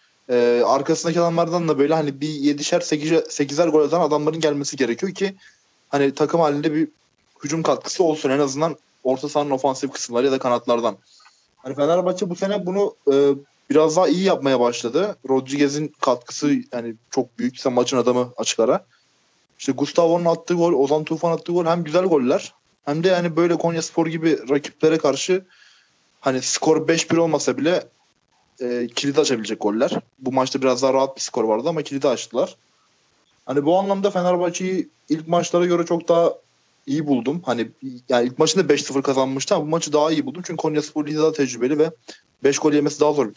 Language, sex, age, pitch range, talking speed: Turkish, male, 20-39, 130-165 Hz, 175 wpm